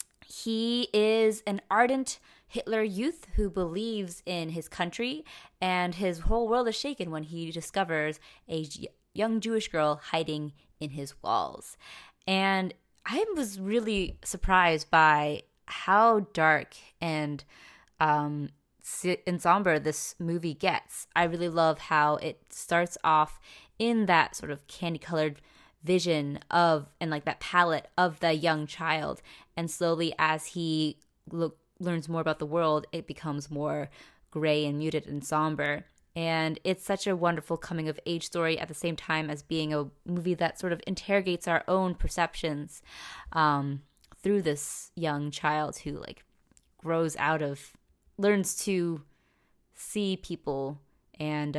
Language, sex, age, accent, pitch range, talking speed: English, female, 20-39, American, 150-185 Hz, 140 wpm